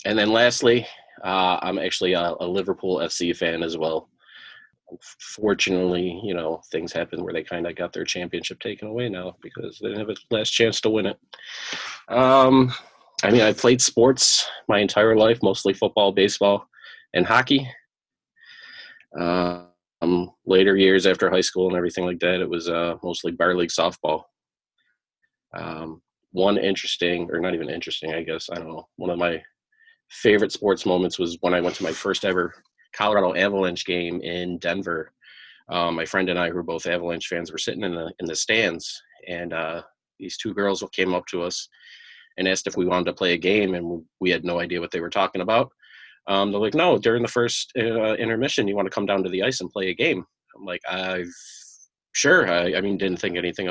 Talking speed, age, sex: 195 wpm, 20-39, male